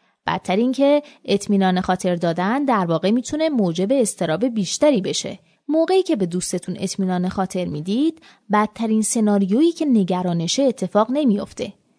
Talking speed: 130 wpm